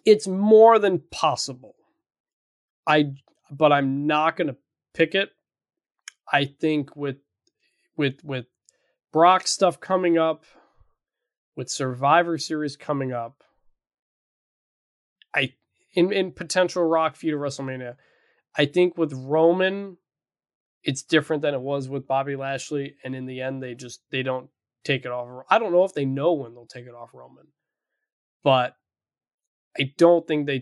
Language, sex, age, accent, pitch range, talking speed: English, male, 20-39, American, 135-175 Hz, 145 wpm